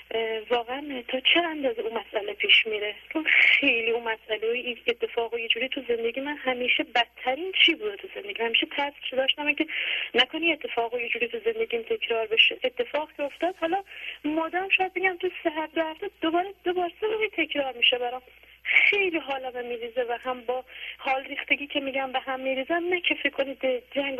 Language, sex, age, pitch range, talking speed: Persian, female, 30-49, 240-325 Hz, 175 wpm